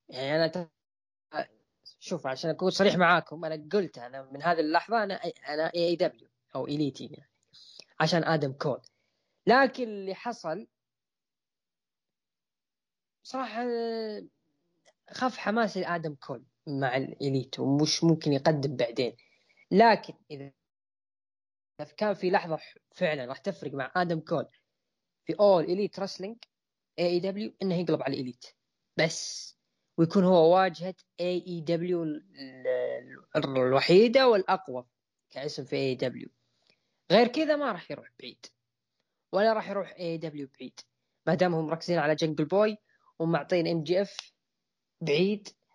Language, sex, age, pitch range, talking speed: Arabic, female, 10-29, 140-185 Hz, 115 wpm